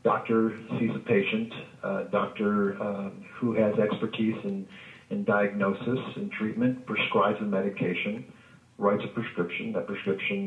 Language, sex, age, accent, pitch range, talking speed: English, male, 50-69, American, 100-150 Hz, 130 wpm